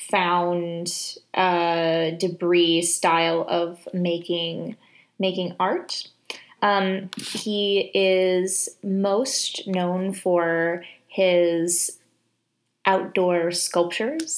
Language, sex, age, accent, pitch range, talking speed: English, female, 20-39, American, 175-200 Hz, 70 wpm